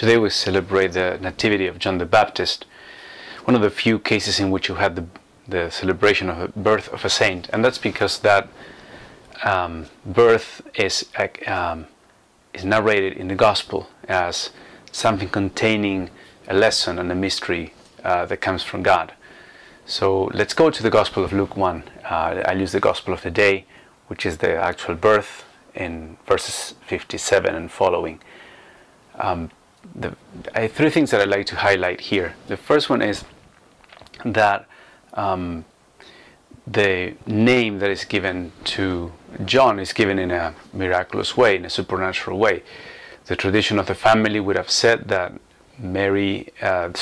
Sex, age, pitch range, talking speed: male, 30-49, 90-105 Hz, 160 wpm